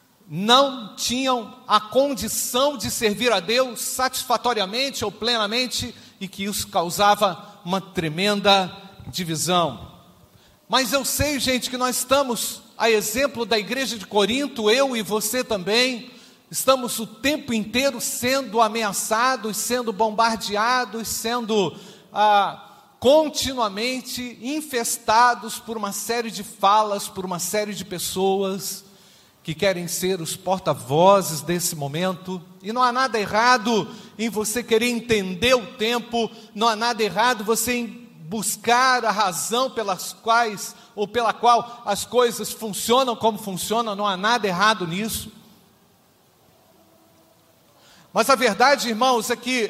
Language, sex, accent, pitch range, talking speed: Portuguese, male, Brazilian, 205-250 Hz, 125 wpm